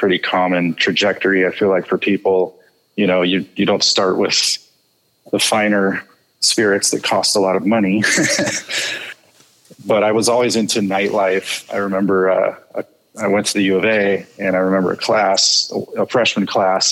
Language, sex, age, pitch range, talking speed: English, male, 30-49, 95-105 Hz, 170 wpm